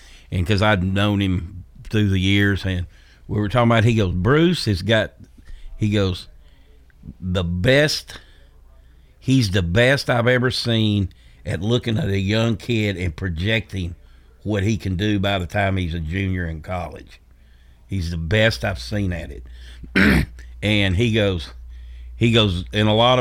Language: English